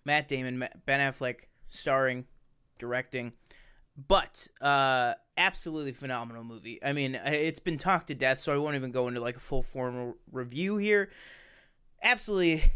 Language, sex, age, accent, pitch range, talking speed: English, male, 20-39, American, 125-150 Hz, 145 wpm